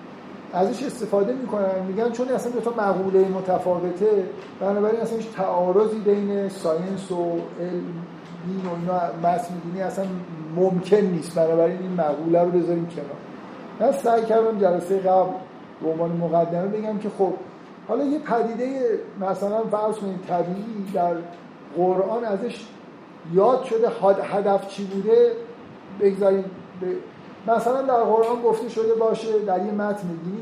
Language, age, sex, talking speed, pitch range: Persian, 50-69, male, 130 wpm, 180-225 Hz